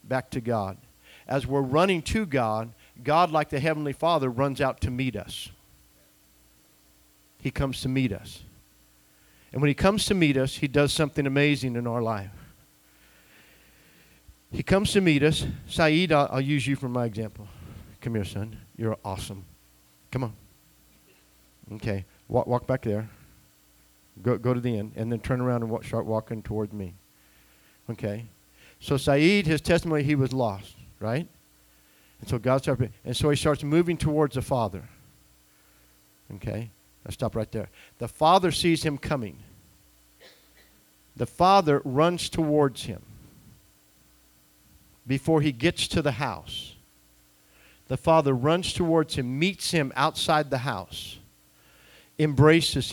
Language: English